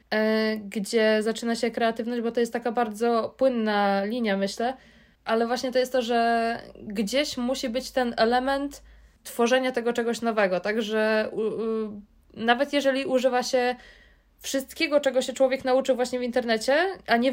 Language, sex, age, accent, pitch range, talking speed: Polish, female, 20-39, native, 200-250 Hz, 145 wpm